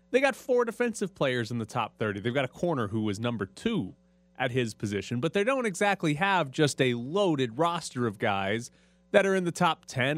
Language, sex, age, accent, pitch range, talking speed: English, male, 30-49, American, 120-180 Hz, 220 wpm